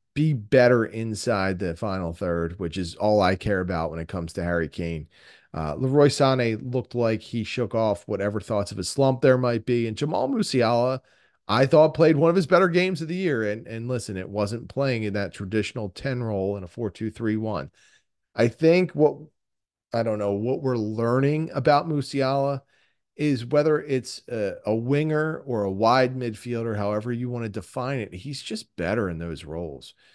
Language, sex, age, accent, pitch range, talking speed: English, male, 40-59, American, 95-130 Hz, 185 wpm